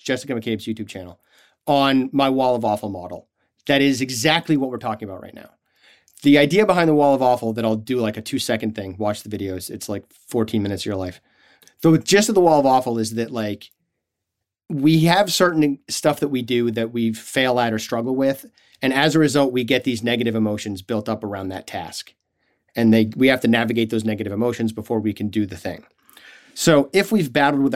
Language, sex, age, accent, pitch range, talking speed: English, male, 30-49, American, 110-135 Hz, 220 wpm